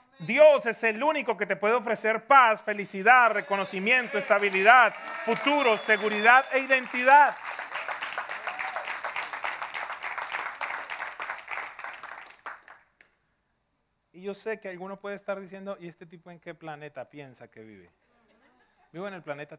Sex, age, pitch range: male, 30-49, 135-200 Hz